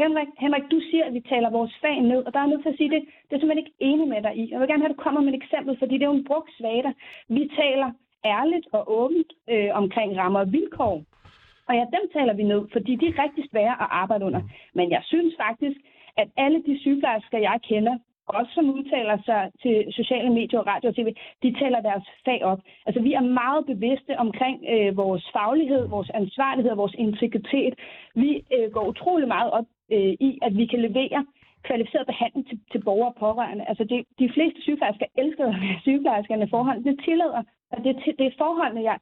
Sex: female